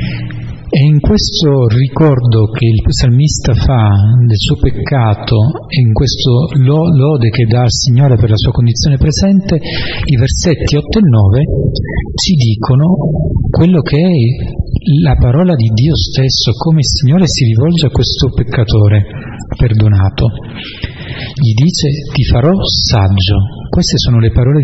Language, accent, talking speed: Italian, native, 140 wpm